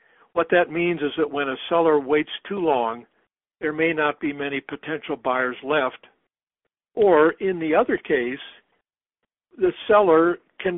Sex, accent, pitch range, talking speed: male, American, 145-175 Hz, 150 wpm